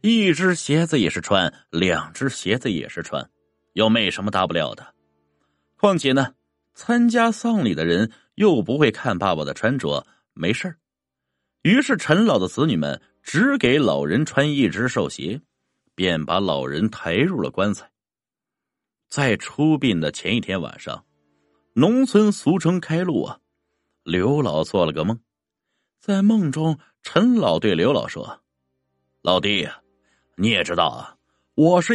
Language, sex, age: Chinese, male, 30-49